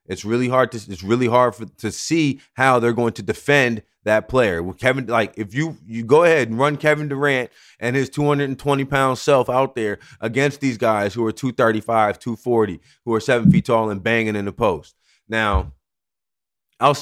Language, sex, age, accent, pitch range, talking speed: English, male, 30-49, American, 115-155 Hz, 215 wpm